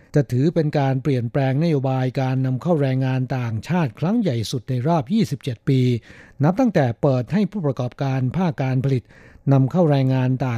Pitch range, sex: 125-150 Hz, male